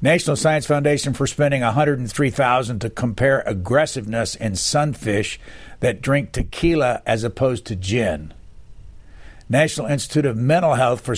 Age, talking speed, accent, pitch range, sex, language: 60-79, 130 wpm, American, 115-150 Hz, male, English